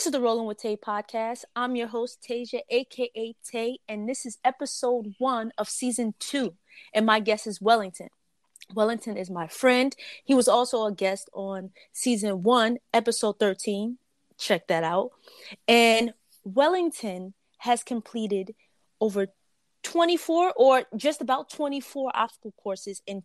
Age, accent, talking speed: 30-49, American, 145 wpm